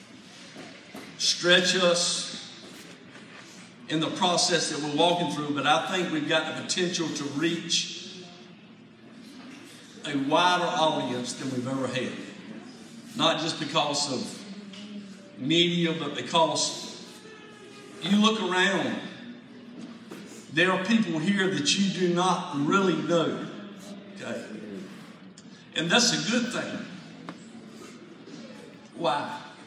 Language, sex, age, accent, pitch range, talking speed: English, male, 50-69, American, 155-210 Hz, 105 wpm